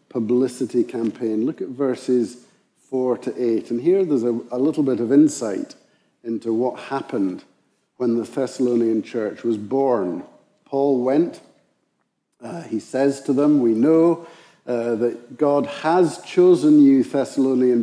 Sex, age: male, 50-69